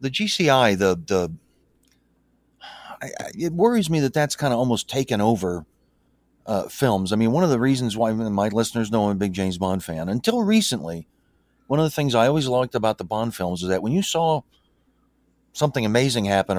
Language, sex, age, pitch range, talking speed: English, male, 40-59, 105-155 Hz, 190 wpm